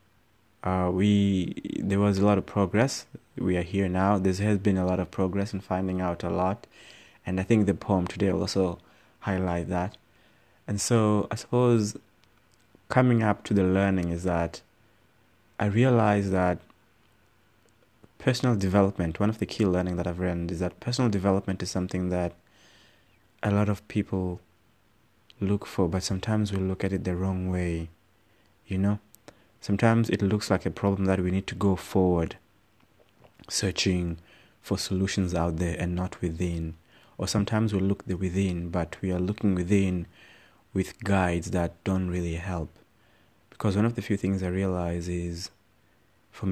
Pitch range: 90-105 Hz